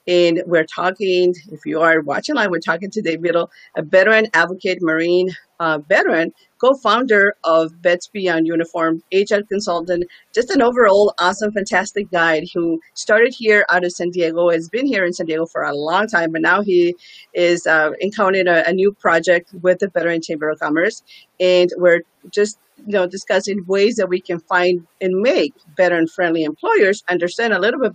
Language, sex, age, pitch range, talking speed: English, female, 40-59, 165-200 Hz, 180 wpm